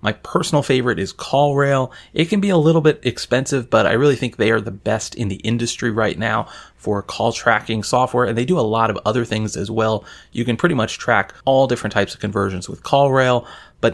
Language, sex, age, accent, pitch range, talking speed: English, male, 30-49, American, 110-145 Hz, 225 wpm